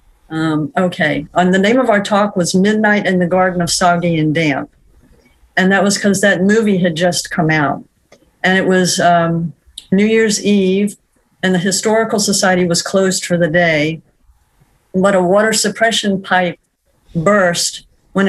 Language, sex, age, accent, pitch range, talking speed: English, female, 50-69, American, 170-200 Hz, 165 wpm